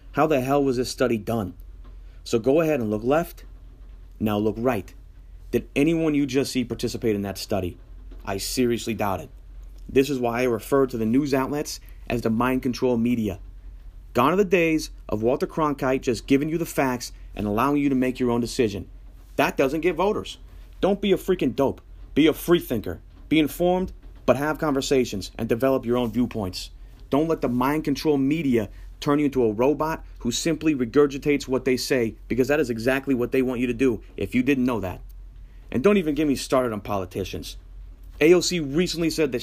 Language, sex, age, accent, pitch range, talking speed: English, male, 30-49, American, 110-155 Hz, 200 wpm